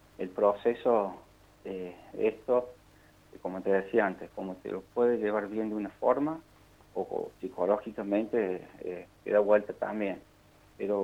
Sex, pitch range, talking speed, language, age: male, 95-110 Hz, 140 wpm, Spanish, 40-59